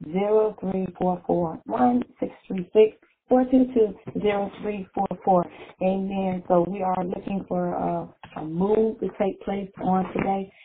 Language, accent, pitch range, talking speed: English, American, 180-210 Hz, 165 wpm